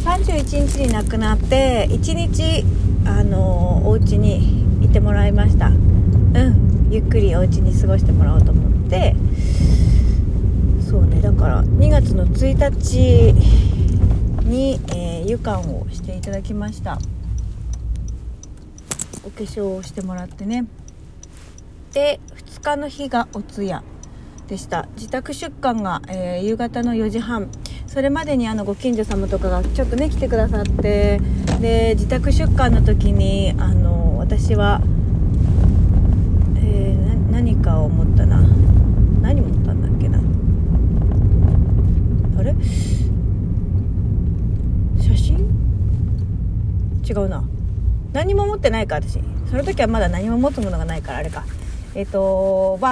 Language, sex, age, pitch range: Japanese, female, 40-59, 90-110 Hz